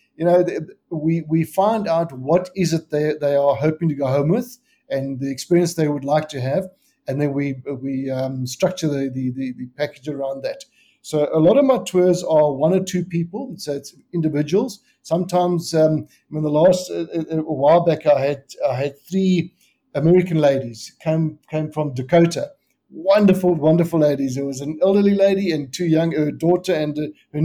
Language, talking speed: English, 190 wpm